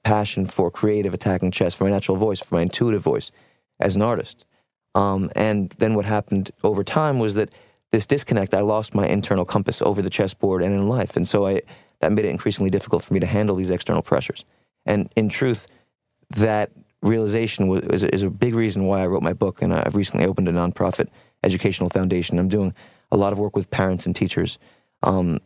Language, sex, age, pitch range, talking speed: English, male, 30-49, 95-110 Hz, 200 wpm